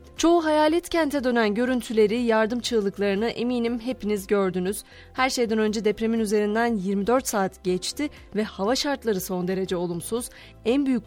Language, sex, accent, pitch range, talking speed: Turkish, female, native, 195-245 Hz, 140 wpm